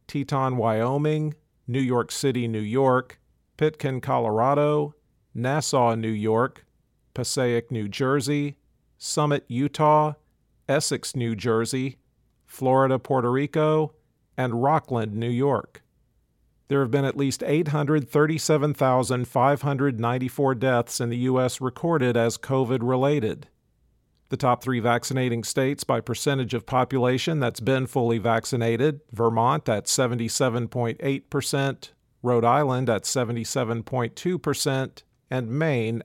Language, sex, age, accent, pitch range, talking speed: English, male, 50-69, American, 120-140 Hz, 105 wpm